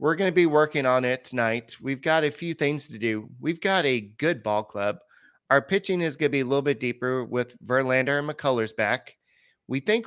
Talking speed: 225 wpm